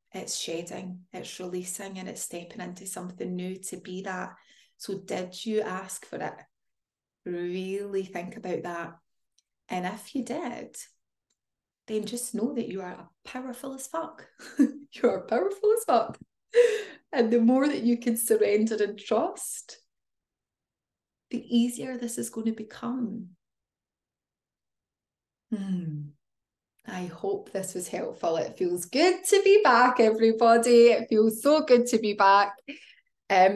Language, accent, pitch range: English, British, 195-255 Hz